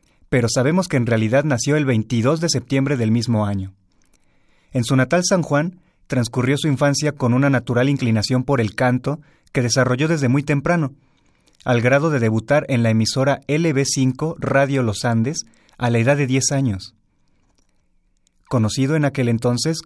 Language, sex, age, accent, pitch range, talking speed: Spanish, male, 30-49, Mexican, 115-145 Hz, 165 wpm